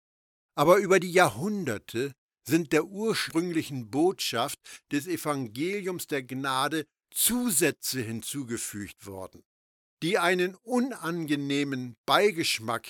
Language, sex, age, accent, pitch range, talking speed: German, male, 60-79, German, 125-190 Hz, 90 wpm